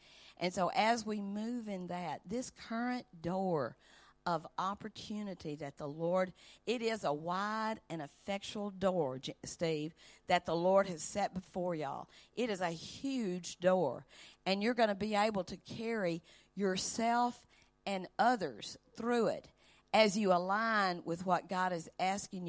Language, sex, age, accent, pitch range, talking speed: English, female, 50-69, American, 180-240 Hz, 150 wpm